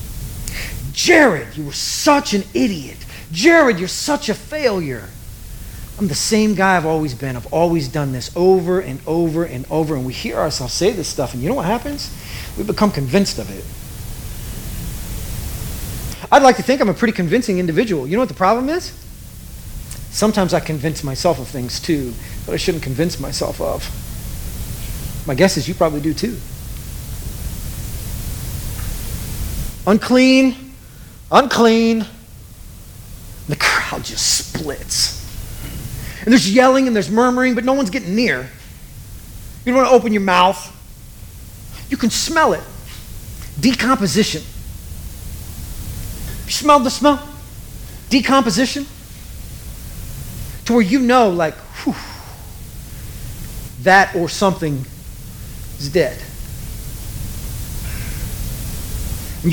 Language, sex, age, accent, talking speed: English, male, 40-59, American, 125 wpm